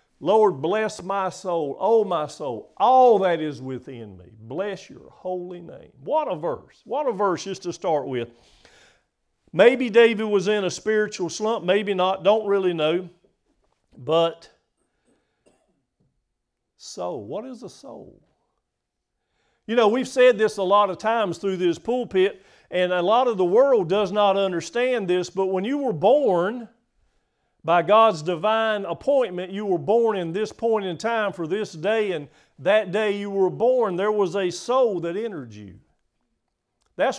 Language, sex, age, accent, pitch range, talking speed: English, male, 50-69, American, 180-225 Hz, 160 wpm